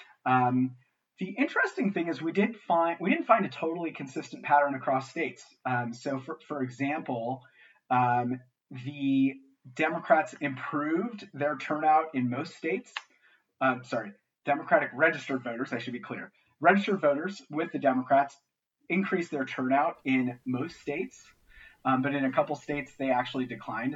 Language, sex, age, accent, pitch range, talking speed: English, male, 30-49, American, 125-155 Hz, 150 wpm